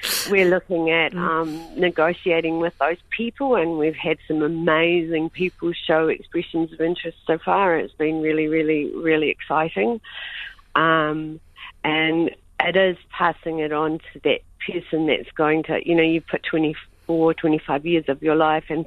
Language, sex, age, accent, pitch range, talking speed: English, female, 50-69, Australian, 145-170 Hz, 160 wpm